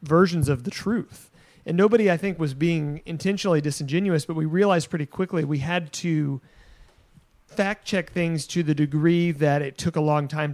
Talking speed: 180 wpm